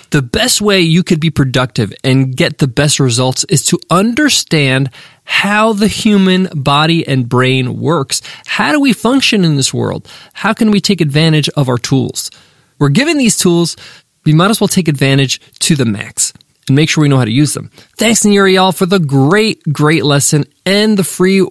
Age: 20-39